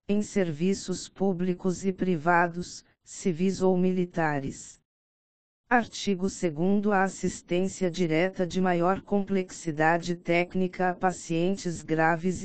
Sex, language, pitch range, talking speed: female, Portuguese, 175-190 Hz, 95 wpm